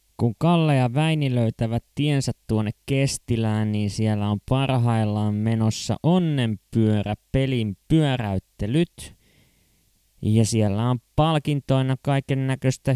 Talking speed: 95 wpm